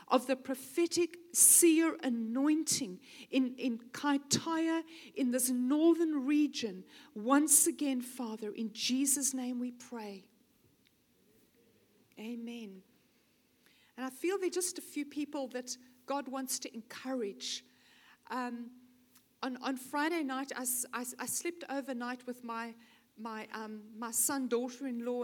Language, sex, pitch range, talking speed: English, female, 235-275 Hz, 120 wpm